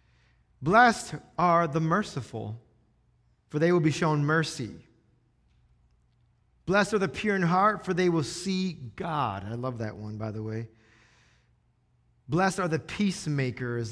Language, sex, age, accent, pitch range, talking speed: English, male, 30-49, American, 130-175 Hz, 140 wpm